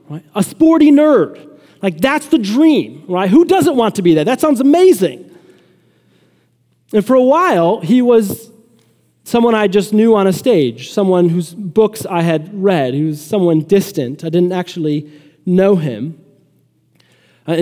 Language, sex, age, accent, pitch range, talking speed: English, male, 30-49, American, 175-230 Hz, 160 wpm